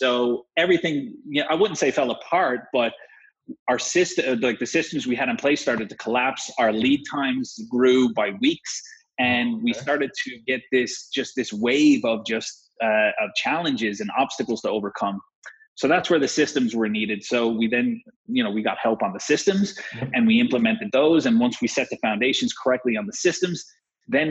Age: 30-49